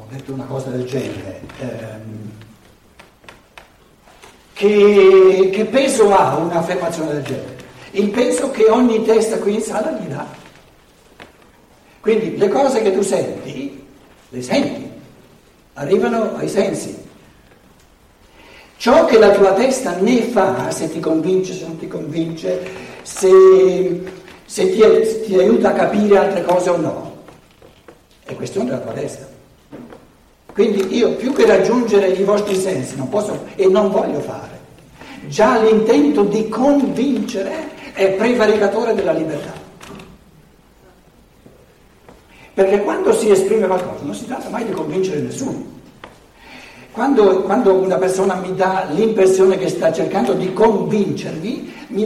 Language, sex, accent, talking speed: Italian, male, native, 130 wpm